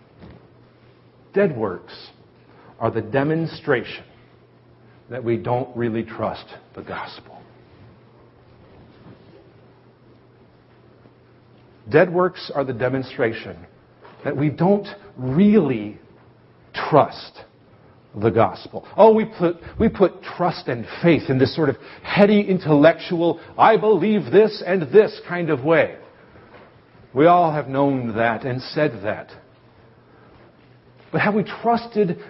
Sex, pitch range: male, 125-185 Hz